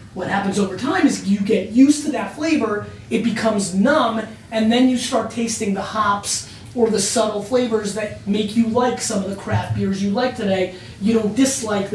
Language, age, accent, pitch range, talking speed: English, 30-49, American, 200-245 Hz, 200 wpm